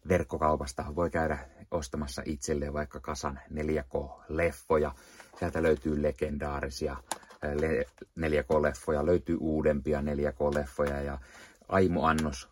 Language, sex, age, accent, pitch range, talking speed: Finnish, male, 30-49, native, 75-95 Hz, 80 wpm